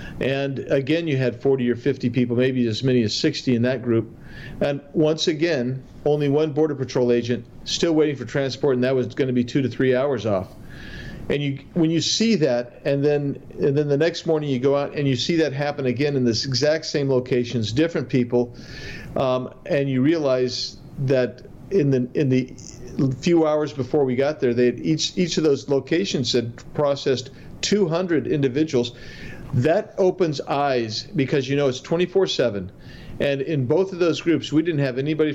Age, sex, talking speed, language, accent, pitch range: 50-69, male, 190 wpm, English, American, 125-155 Hz